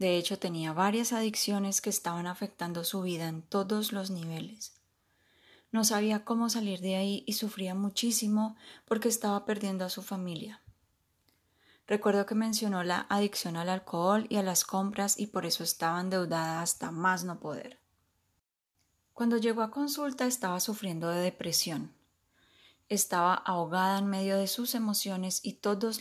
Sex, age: female, 10-29